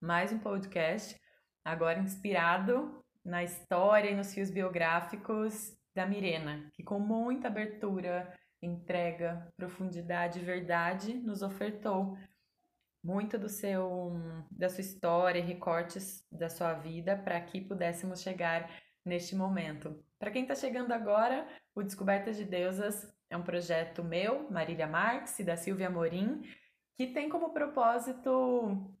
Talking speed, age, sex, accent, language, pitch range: 125 wpm, 20-39, female, Brazilian, Portuguese, 170-215 Hz